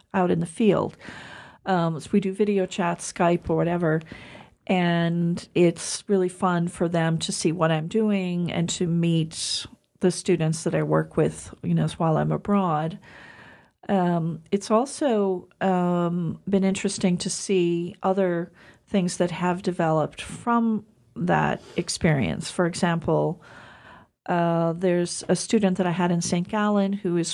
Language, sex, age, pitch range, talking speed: English, female, 40-59, 170-195 Hz, 150 wpm